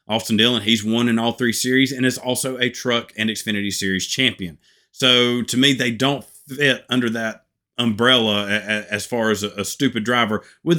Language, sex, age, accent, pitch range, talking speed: English, male, 30-49, American, 110-130 Hz, 185 wpm